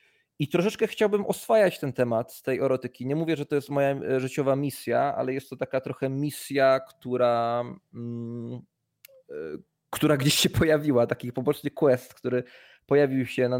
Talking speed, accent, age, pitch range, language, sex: 160 wpm, native, 20-39, 120-140 Hz, Polish, male